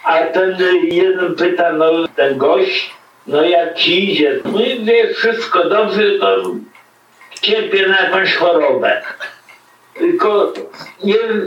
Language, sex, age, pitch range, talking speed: Polish, male, 60-79, 155-235 Hz, 120 wpm